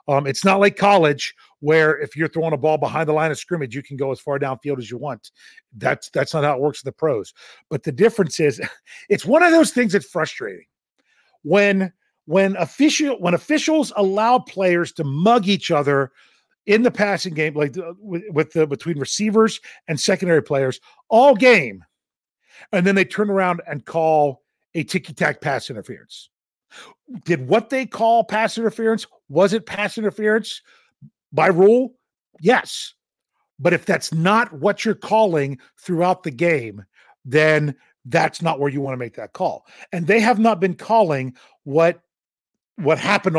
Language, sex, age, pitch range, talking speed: English, male, 40-59, 150-215 Hz, 175 wpm